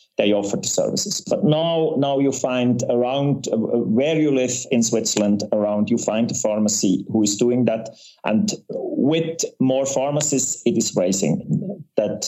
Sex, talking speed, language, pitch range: male, 160 wpm, German, 110-140 Hz